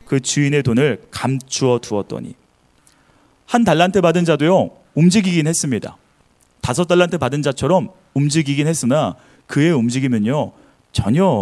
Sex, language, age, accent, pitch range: male, Korean, 30-49, native, 110-160 Hz